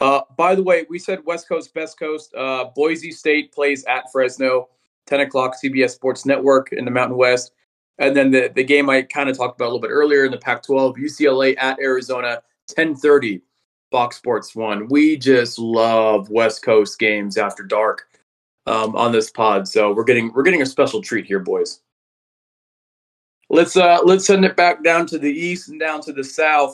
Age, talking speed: 30-49, 195 wpm